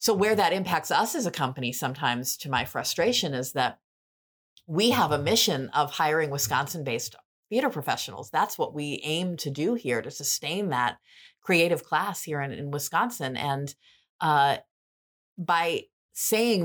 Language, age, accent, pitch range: English, 30-49, American, 135-175 Hz